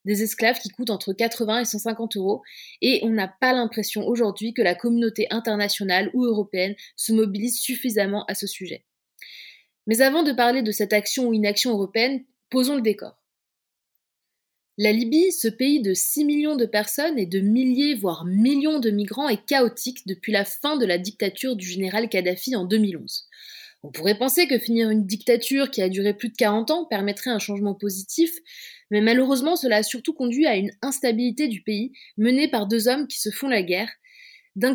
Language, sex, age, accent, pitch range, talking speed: French, female, 20-39, French, 205-260 Hz, 185 wpm